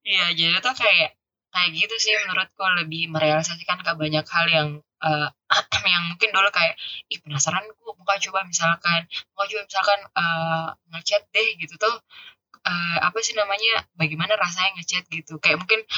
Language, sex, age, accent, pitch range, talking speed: Indonesian, female, 10-29, native, 165-210 Hz, 160 wpm